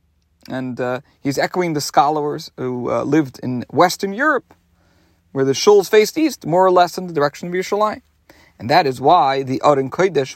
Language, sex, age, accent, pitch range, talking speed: English, male, 40-59, American, 125-180 Hz, 185 wpm